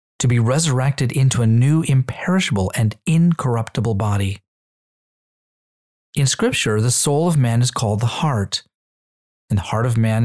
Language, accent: English, American